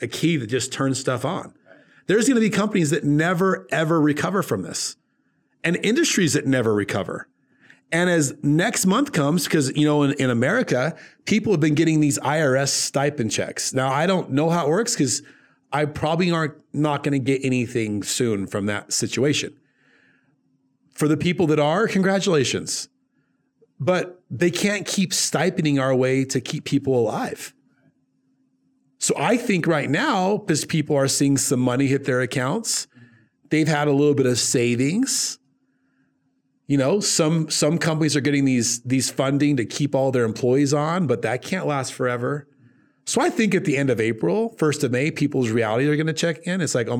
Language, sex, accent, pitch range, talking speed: English, male, American, 130-165 Hz, 180 wpm